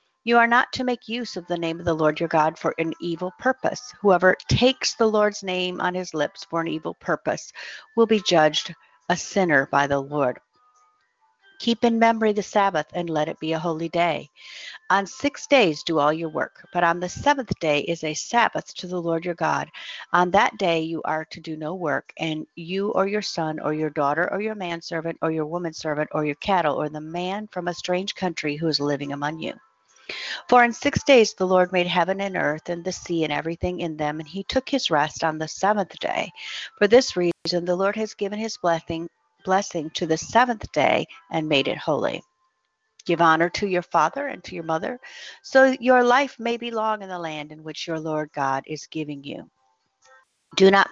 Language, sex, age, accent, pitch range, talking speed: English, female, 50-69, American, 160-215 Hz, 215 wpm